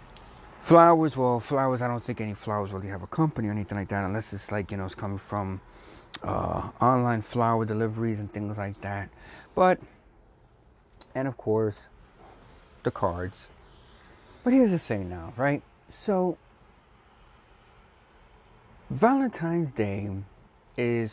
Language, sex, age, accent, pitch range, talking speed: English, male, 30-49, American, 100-125 Hz, 135 wpm